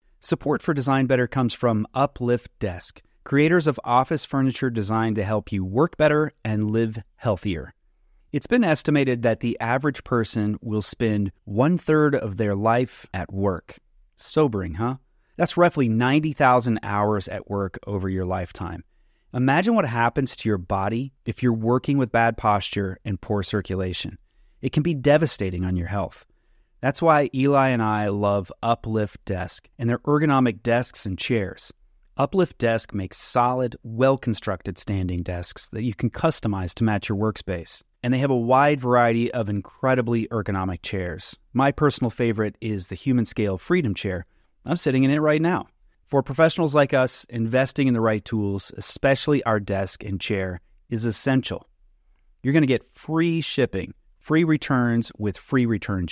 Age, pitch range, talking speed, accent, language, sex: 30-49, 100-135 Hz, 160 wpm, American, English, male